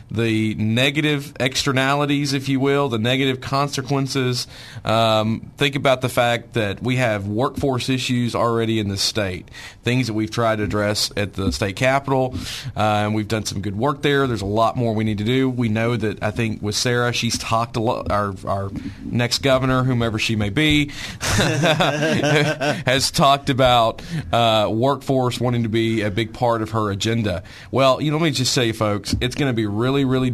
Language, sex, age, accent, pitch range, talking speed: English, male, 40-59, American, 110-135 Hz, 190 wpm